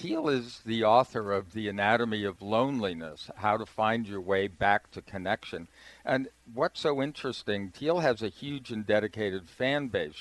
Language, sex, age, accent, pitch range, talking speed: English, male, 50-69, American, 100-120 Hz, 170 wpm